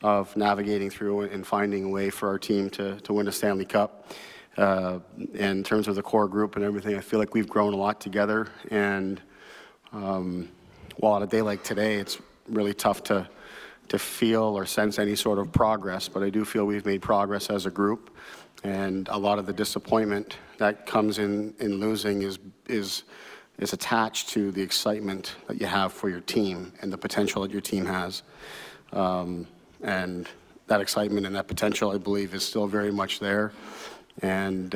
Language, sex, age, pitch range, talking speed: English, male, 40-59, 100-105 Hz, 190 wpm